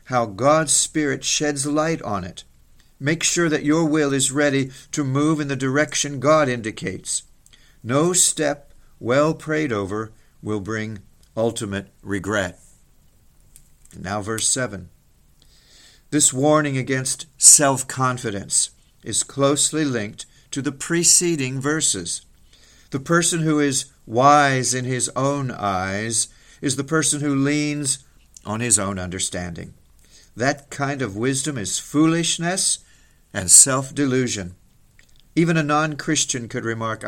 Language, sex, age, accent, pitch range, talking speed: English, male, 50-69, American, 110-145 Hz, 120 wpm